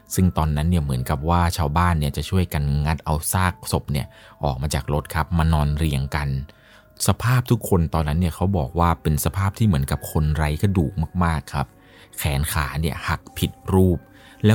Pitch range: 75-95 Hz